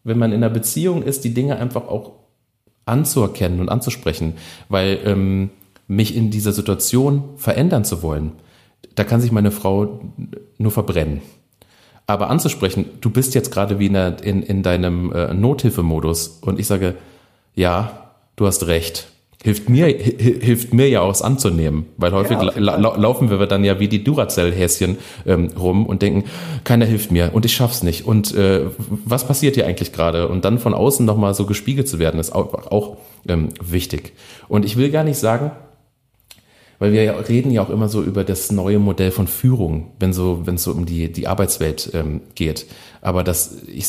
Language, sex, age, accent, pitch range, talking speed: German, male, 40-59, German, 90-120 Hz, 185 wpm